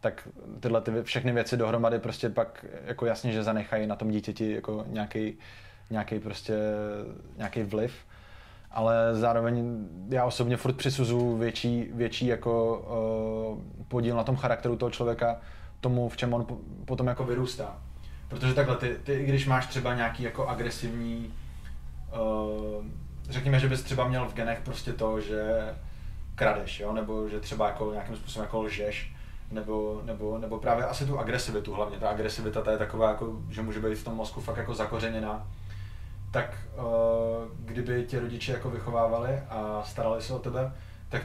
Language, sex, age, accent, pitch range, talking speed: Czech, male, 20-39, native, 105-120 Hz, 160 wpm